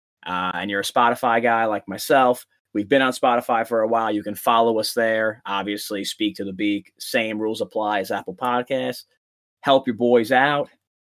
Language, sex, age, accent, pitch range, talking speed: English, male, 20-39, American, 110-130 Hz, 190 wpm